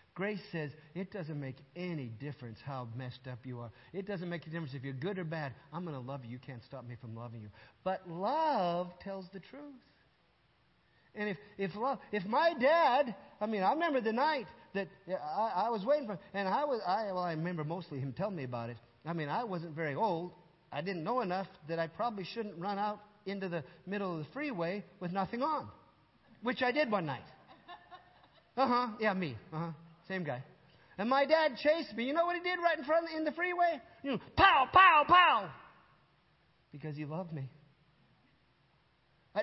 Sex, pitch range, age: male, 140-210 Hz, 50-69